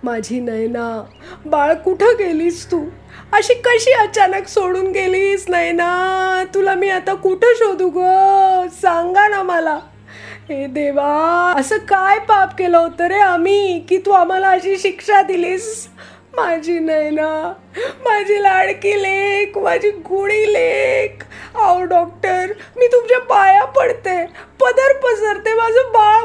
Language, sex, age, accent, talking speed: Marathi, female, 30-49, native, 125 wpm